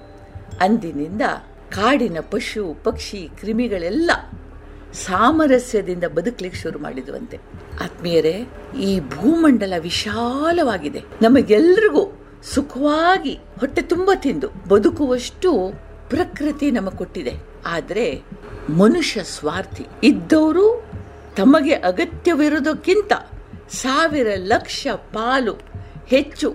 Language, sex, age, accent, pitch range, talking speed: Kannada, female, 50-69, native, 190-305 Hz, 70 wpm